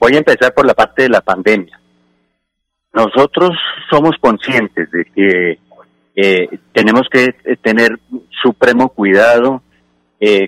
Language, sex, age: Spanish, male, 50-69